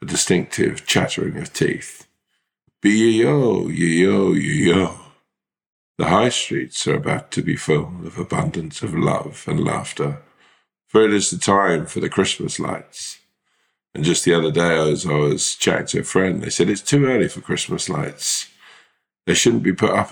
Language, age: English, 50-69